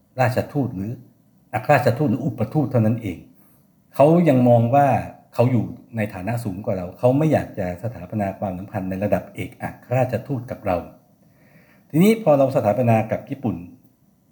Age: 60-79